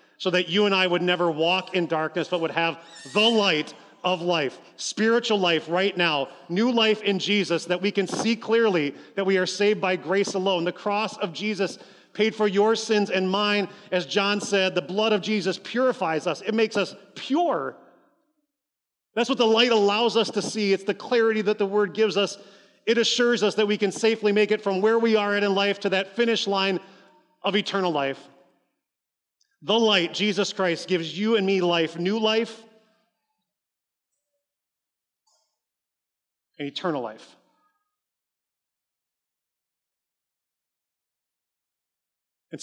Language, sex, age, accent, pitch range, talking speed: English, male, 40-59, American, 160-215 Hz, 160 wpm